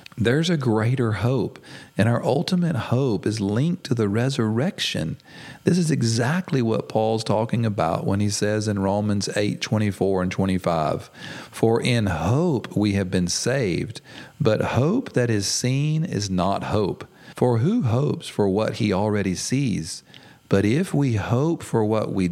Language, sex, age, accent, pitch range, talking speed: English, male, 40-59, American, 95-125 Hz, 160 wpm